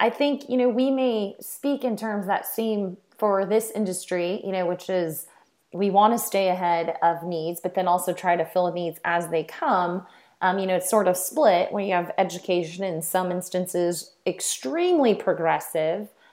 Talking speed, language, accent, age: 190 wpm, English, American, 30-49